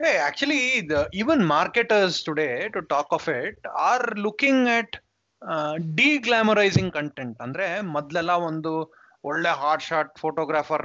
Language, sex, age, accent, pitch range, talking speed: Kannada, male, 20-39, native, 150-210 Hz, 135 wpm